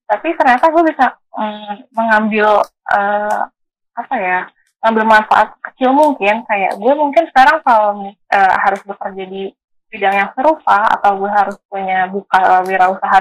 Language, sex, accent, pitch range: Indonesian, female, native, 195-240 Hz